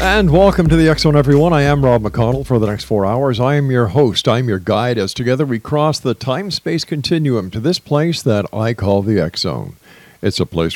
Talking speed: 240 wpm